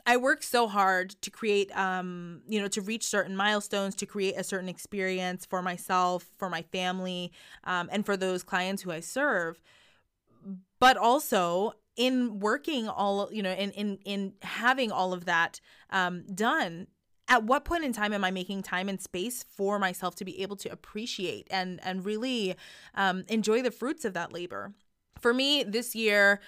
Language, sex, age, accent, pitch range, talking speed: English, female, 20-39, American, 185-215 Hz, 180 wpm